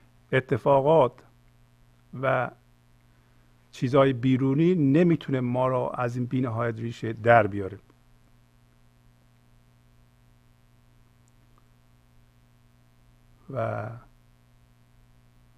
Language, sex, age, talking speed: Persian, male, 50-69, 55 wpm